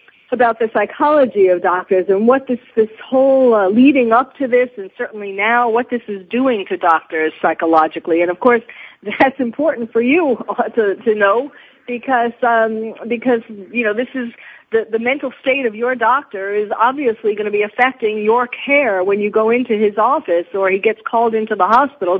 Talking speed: 190 wpm